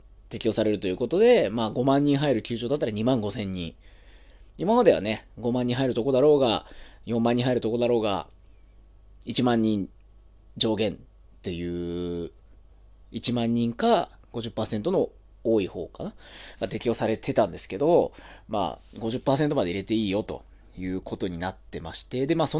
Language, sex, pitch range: Japanese, male, 95-160 Hz